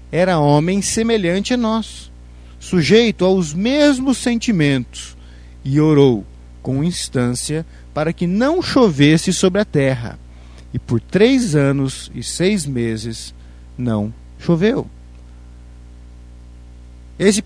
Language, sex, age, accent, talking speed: Portuguese, male, 50-69, Brazilian, 105 wpm